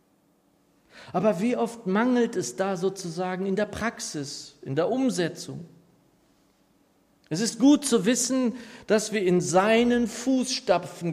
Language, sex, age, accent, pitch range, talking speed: German, male, 50-69, German, 155-215 Hz, 125 wpm